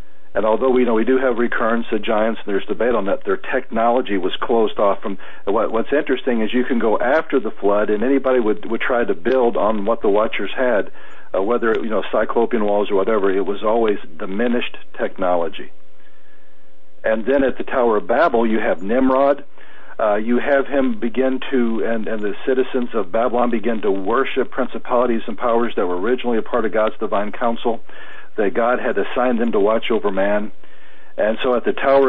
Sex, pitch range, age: male, 110-130 Hz, 50-69